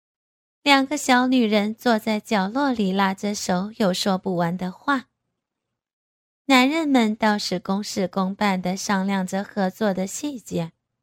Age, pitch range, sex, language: 20-39, 195-250 Hz, female, Chinese